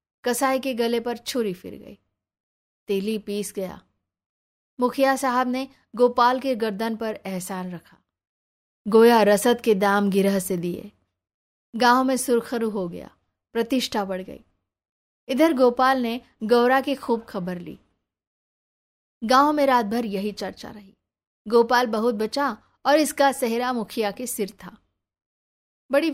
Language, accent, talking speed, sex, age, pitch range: Hindi, native, 140 wpm, female, 20-39, 195-245 Hz